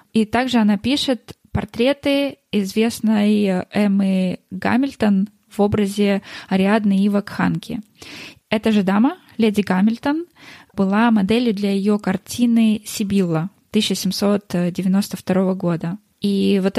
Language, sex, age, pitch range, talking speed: Russian, female, 20-39, 185-215 Hz, 100 wpm